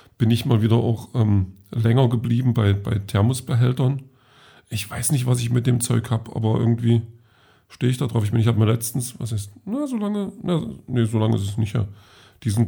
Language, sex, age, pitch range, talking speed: German, male, 50-69, 110-125 Hz, 220 wpm